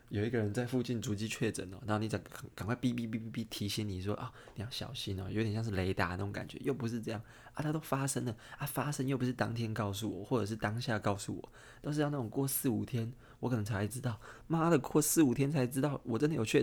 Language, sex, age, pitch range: Chinese, male, 20-39, 105-125 Hz